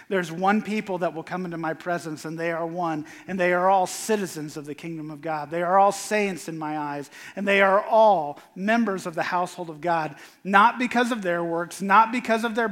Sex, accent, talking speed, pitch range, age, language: male, American, 230 wpm, 165-215 Hz, 40-59, English